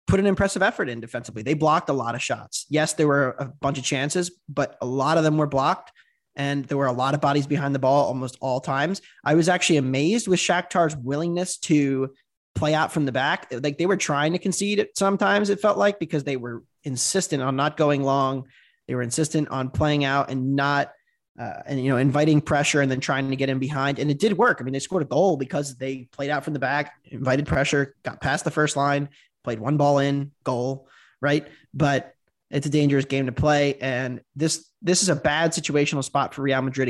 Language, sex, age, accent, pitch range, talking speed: English, male, 20-39, American, 135-165 Hz, 230 wpm